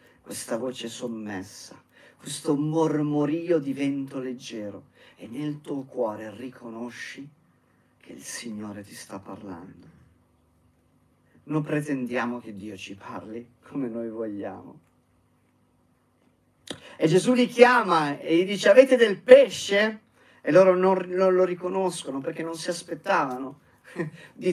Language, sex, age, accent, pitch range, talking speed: Italian, male, 40-59, native, 125-160 Hz, 120 wpm